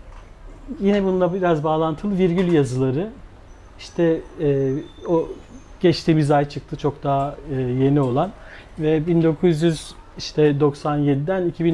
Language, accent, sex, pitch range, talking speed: Turkish, native, male, 135-170 Hz, 95 wpm